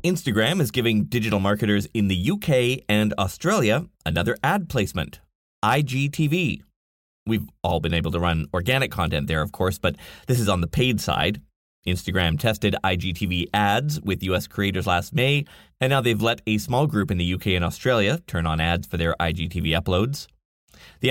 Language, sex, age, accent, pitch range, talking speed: English, male, 20-39, American, 90-150 Hz, 175 wpm